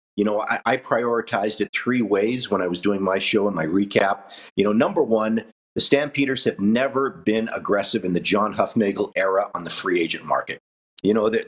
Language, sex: English, male